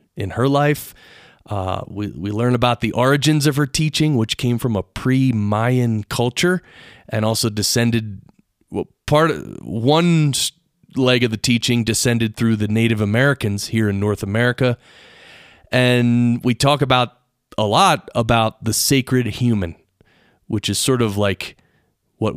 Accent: American